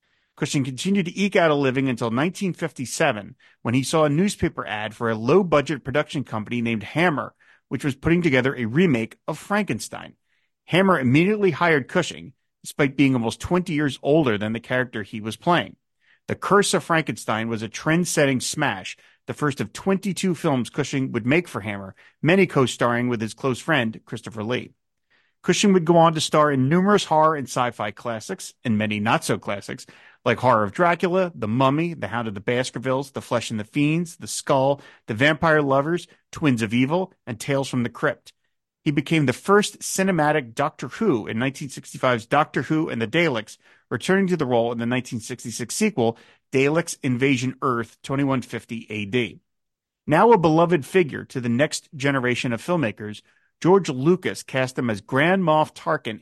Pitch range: 120-165 Hz